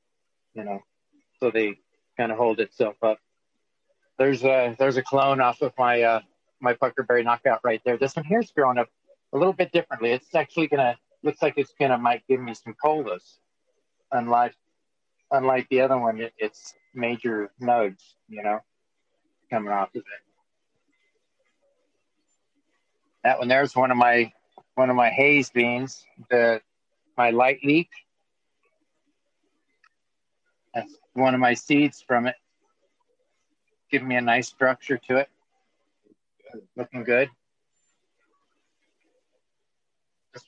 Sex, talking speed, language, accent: male, 135 wpm, English, American